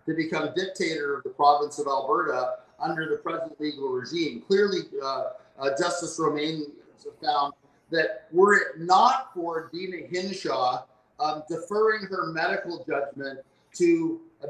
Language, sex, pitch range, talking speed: English, male, 140-180 Hz, 135 wpm